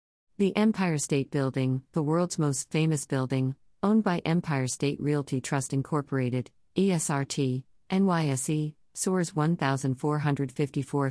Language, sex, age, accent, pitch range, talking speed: English, female, 50-69, American, 130-165 Hz, 110 wpm